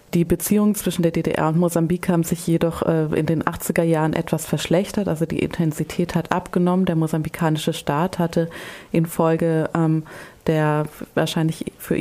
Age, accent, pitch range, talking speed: 30-49, German, 155-175 Hz, 145 wpm